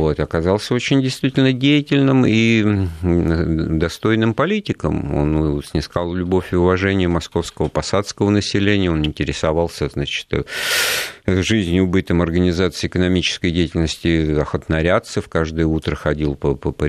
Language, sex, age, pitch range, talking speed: Russian, male, 50-69, 75-95 Hz, 105 wpm